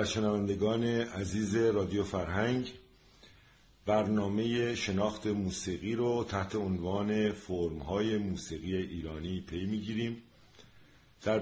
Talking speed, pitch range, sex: 95 wpm, 95-115 Hz, male